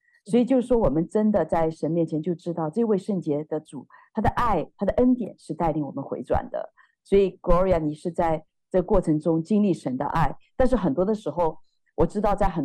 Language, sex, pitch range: Chinese, female, 155-205 Hz